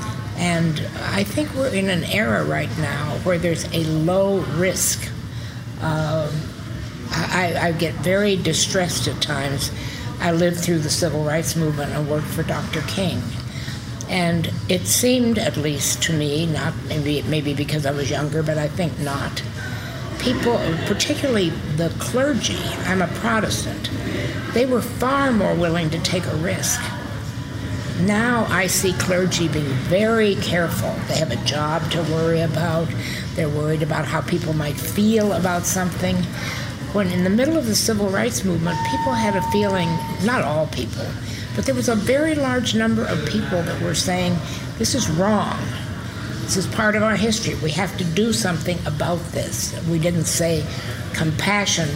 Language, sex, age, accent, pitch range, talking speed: English, female, 60-79, American, 125-175 Hz, 160 wpm